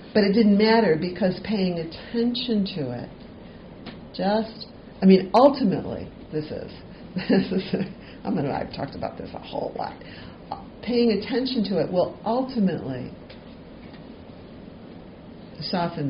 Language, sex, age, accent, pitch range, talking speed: English, female, 50-69, American, 165-215 Hz, 115 wpm